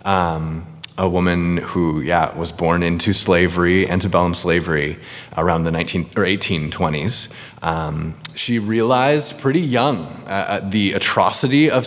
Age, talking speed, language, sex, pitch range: 20-39, 125 wpm, English, male, 95-130 Hz